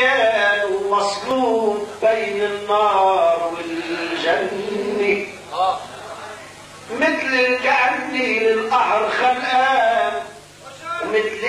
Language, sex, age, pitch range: Arabic, male, 40-59, 210-305 Hz